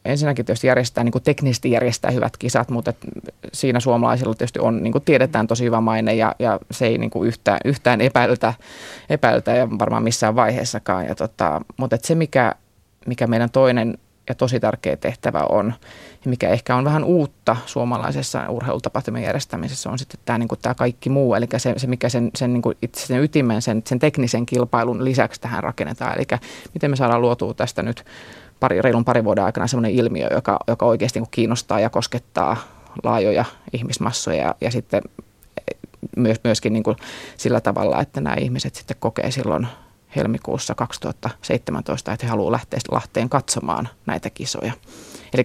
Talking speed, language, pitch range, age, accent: 165 wpm, Finnish, 110-130 Hz, 20-39, native